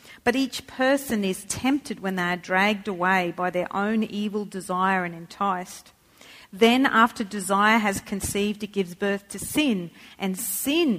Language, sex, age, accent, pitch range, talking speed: English, female, 40-59, Australian, 195-235 Hz, 160 wpm